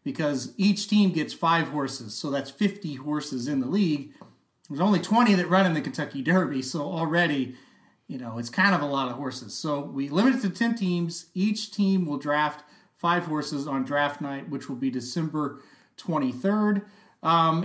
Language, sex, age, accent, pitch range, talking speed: English, male, 30-49, American, 145-190 Hz, 185 wpm